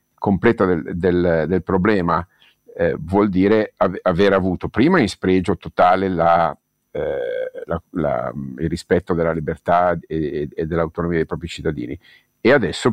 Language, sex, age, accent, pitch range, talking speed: Italian, male, 50-69, native, 85-100 Hz, 120 wpm